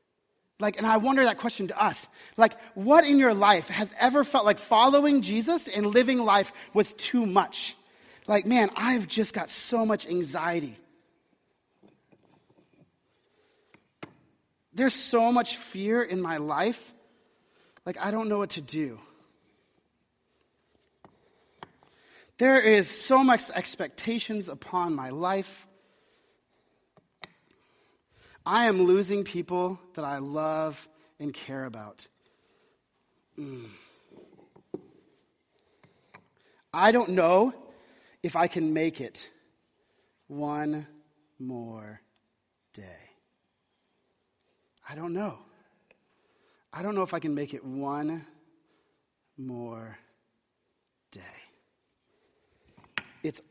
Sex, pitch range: male, 150-230 Hz